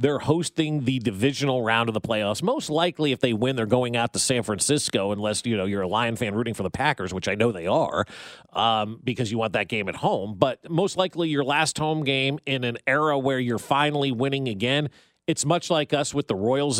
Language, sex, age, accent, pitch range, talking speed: English, male, 40-59, American, 125-155 Hz, 240 wpm